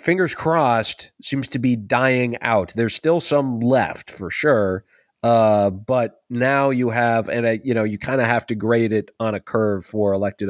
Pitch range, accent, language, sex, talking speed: 105-125 Hz, American, English, male, 195 wpm